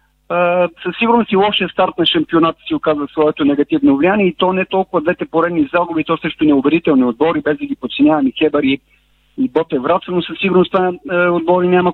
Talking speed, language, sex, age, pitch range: 205 wpm, Bulgarian, male, 40-59, 155-190 Hz